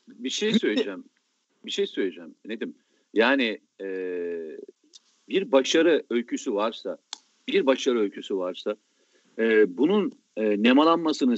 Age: 50-69